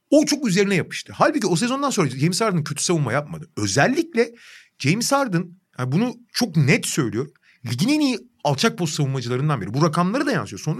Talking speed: 185 wpm